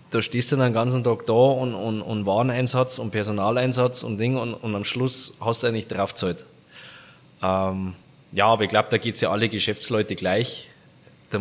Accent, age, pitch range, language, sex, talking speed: German, 20-39, 110-130 Hz, German, male, 190 wpm